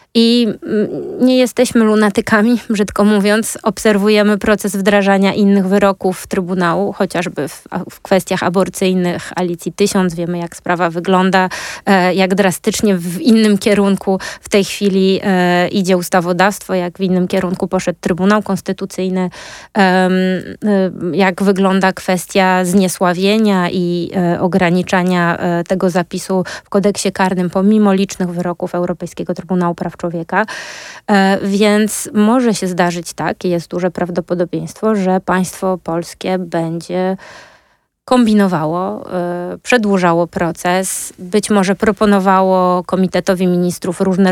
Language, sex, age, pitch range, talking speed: Polish, female, 20-39, 175-200 Hz, 110 wpm